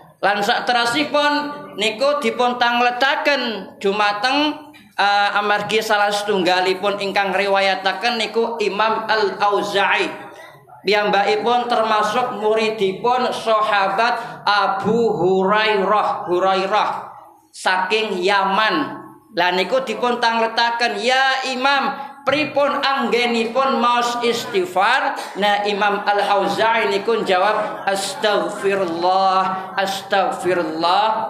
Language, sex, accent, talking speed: Indonesian, male, native, 85 wpm